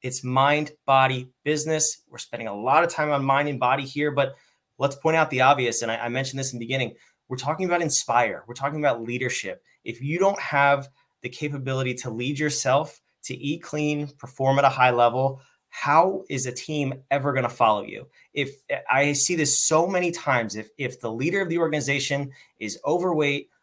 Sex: male